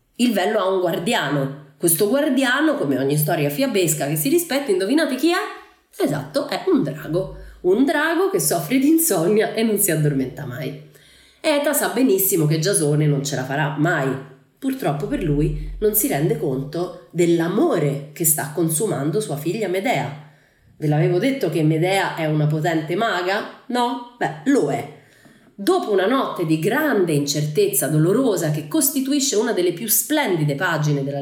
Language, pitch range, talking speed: Italian, 145-245 Hz, 160 wpm